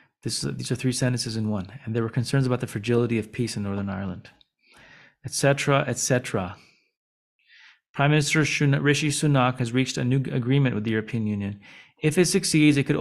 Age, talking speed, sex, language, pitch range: 30-49, 190 wpm, male, English, 110-140 Hz